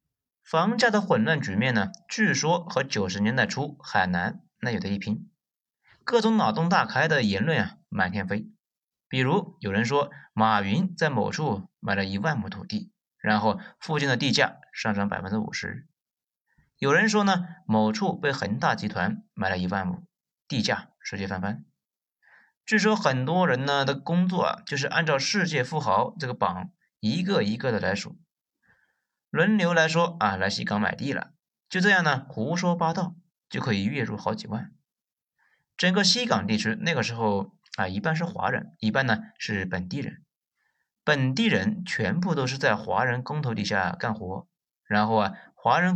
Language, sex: Chinese, male